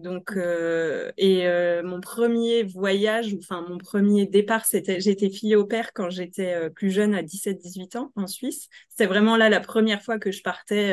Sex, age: female, 20-39